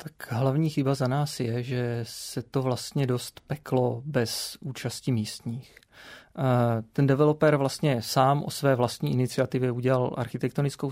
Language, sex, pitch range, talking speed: Czech, male, 120-135 Hz, 135 wpm